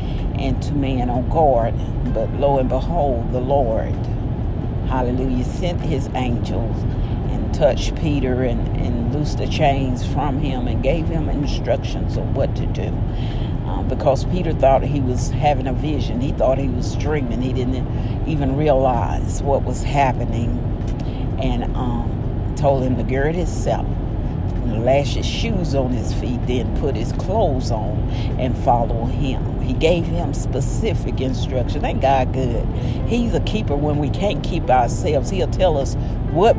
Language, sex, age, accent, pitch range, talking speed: English, female, 50-69, American, 115-135 Hz, 155 wpm